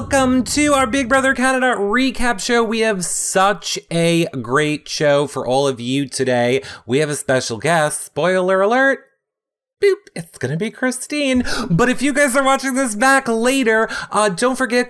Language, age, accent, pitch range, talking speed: English, 30-49, American, 145-230 Hz, 175 wpm